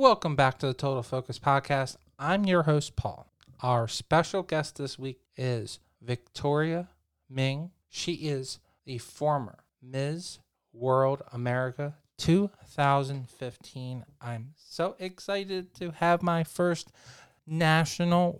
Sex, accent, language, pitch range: male, American, English, 125-155 Hz